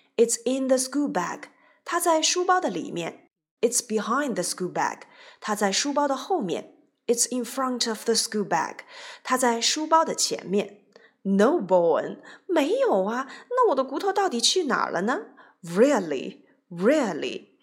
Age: 30-49